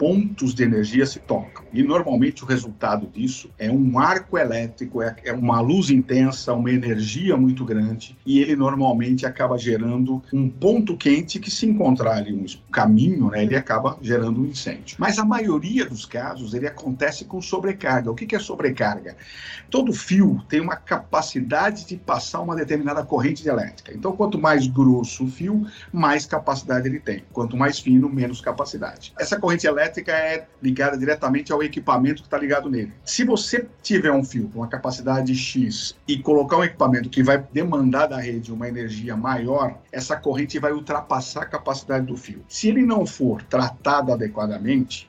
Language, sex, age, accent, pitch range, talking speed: Portuguese, male, 50-69, Brazilian, 120-155 Hz, 170 wpm